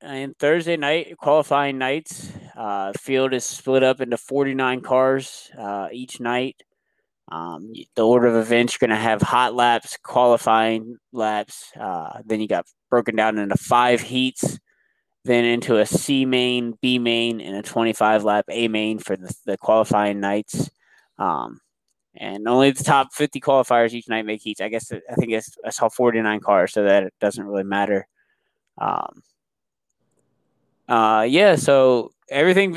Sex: male